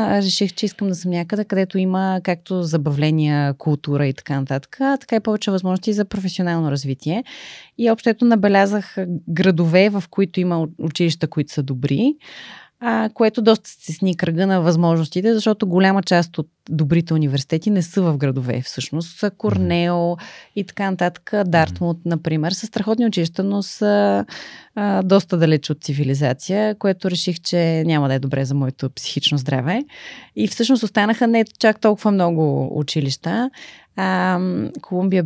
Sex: female